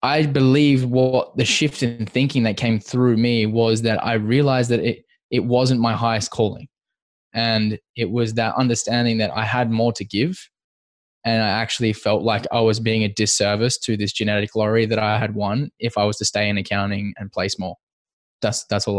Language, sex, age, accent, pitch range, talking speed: English, male, 10-29, Australian, 110-125 Hz, 200 wpm